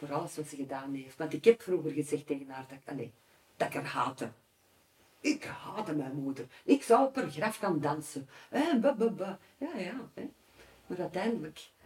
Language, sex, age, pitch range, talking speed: Dutch, female, 50-69, 150-210 Hz, 190 wpm